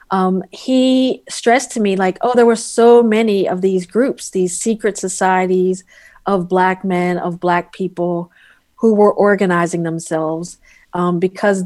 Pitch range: 170-195 Hz